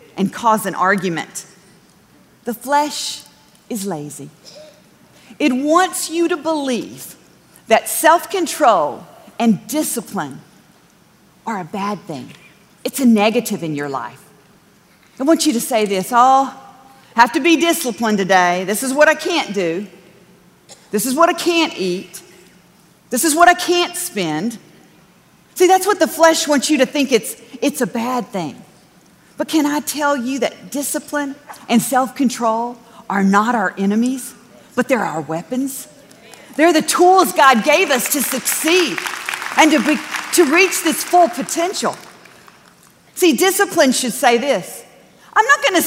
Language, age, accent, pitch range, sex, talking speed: English, 40-59, American, 205-315 Hz, female, 150 wpm